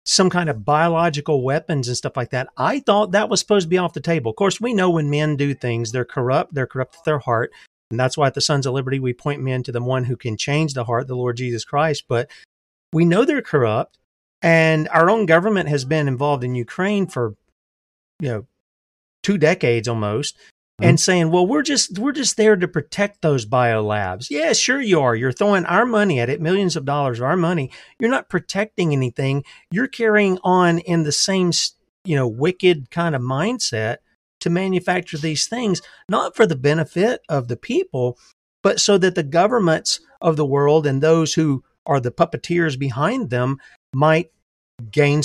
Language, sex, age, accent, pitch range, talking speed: English, male, 40-59, American, 130-185 Hz, 200 wpm